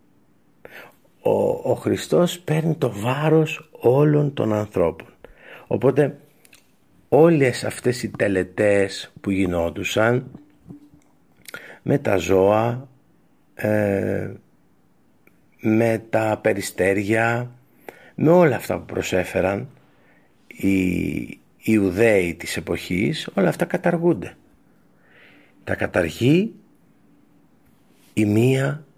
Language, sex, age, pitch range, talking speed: Greek, male, 50-69, 100-150 Hz, 75 wpm